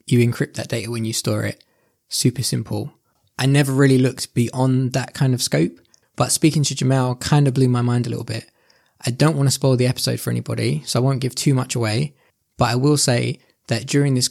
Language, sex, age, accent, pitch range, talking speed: English, male, 20-39, British, 115-130 Hz, 225 wpm